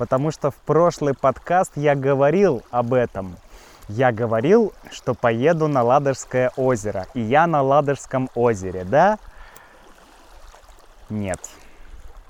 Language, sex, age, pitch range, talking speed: Russian, male, 20-39, 115-145 Hz, 110 wpm